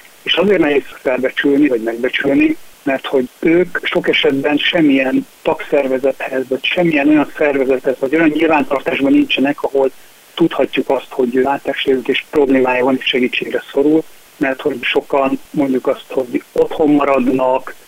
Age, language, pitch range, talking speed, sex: 60-79, Hungarian, 130-185 Hz, 140 wpm, male